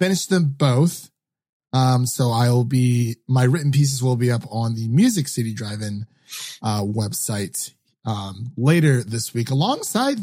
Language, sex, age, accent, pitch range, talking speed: English, male, 30-49, American, 120-145 Hz, 145 wpm